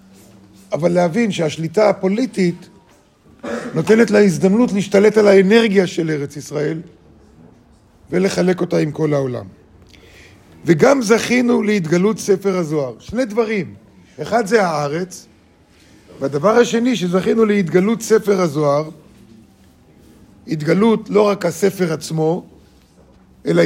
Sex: male